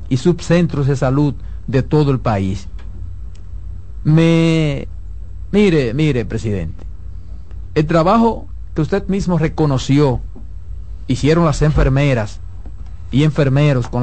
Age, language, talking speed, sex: 50-69, Spanish, 105 wpm, male